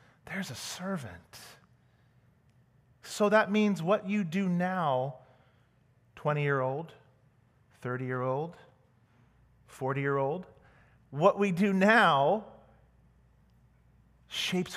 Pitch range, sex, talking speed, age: 125-165 Hz, male, 75 wpm, 30-49